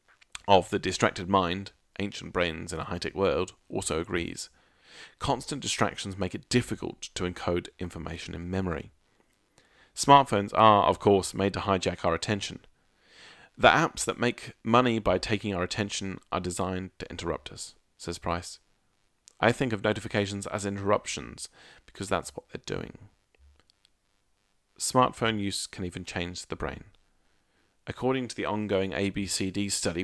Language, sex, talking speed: English, male, 140 wpm